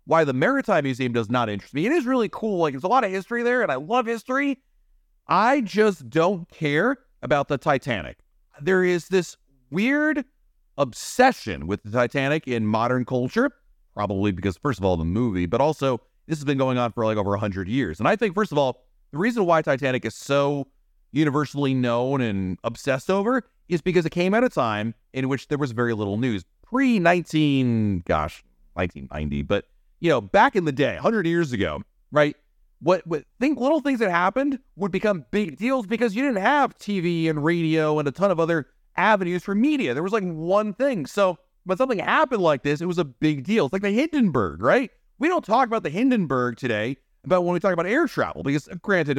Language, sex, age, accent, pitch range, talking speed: English, male, 30-49, American, 125-205 Hz, 205 wpm